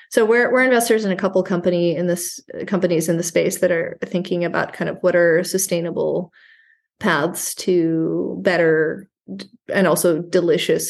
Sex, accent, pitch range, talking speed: female, American, 175-205 Hz, 160 wpm